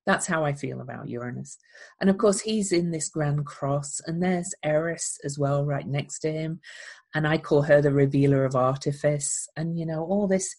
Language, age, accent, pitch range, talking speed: English, 40-59, British, 140-175 Hz, 205 wpm